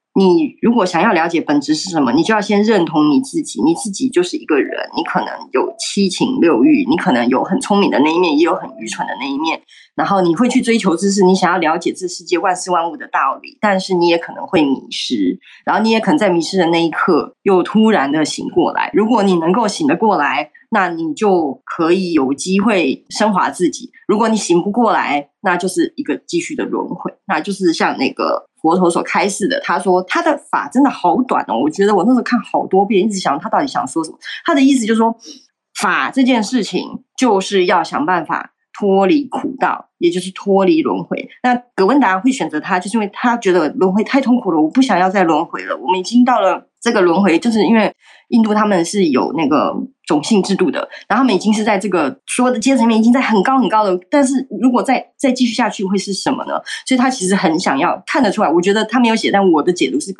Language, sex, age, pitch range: Chinese, female, 20-39, 185-275 Hz